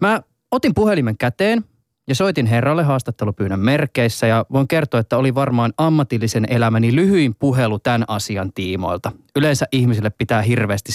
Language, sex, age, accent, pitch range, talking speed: Finnish, male, 20-39, native, 110-150 Hz, 140 wpm